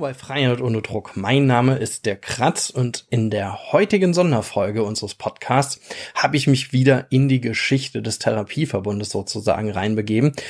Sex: male